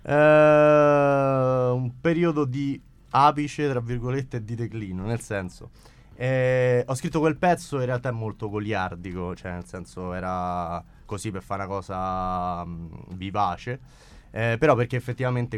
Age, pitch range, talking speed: 20-39, 100-125 Hz, 135 wpm